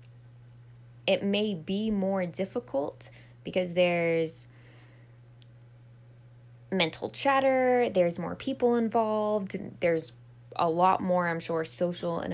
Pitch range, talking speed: 120-185 Hz, 100 wpm